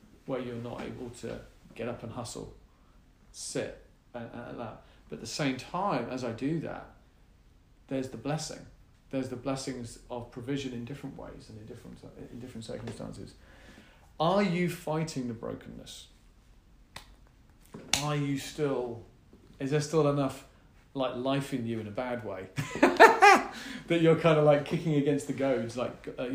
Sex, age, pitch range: male, 40-59, 120-145 Hz